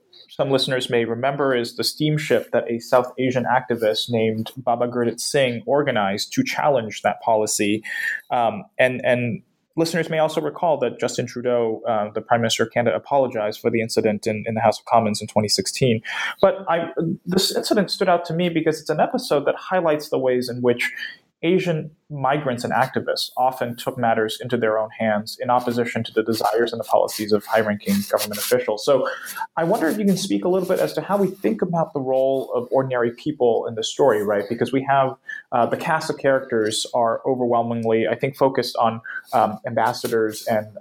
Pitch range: 110-150 Hz